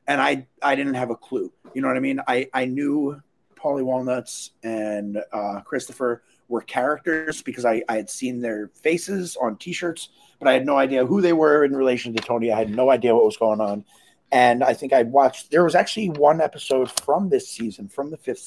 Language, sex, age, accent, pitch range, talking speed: English, male, 30-49, American, 115-135 Hz, 220 wpm